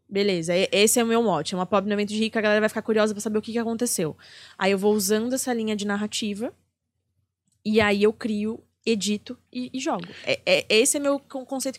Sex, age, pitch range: female, 20-39, 210-275 Hz